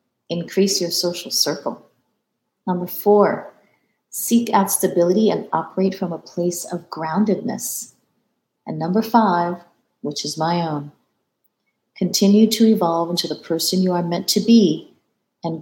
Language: English